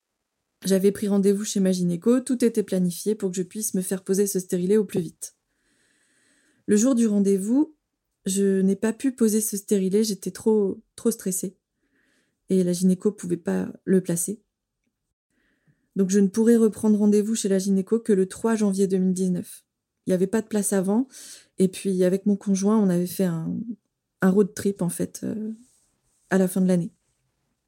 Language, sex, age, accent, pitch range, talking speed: French, female, 20-39, French, 190-215 Hz, 185 wpm